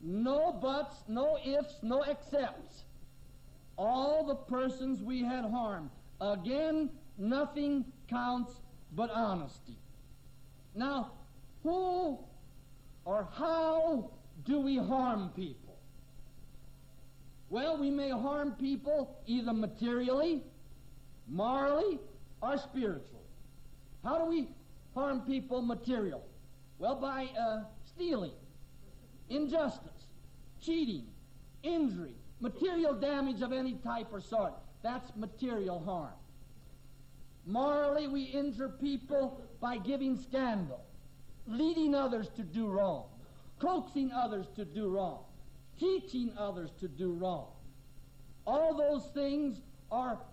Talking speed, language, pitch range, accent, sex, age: 100 wpm, English, 200-285 Hz, American, male, 60-79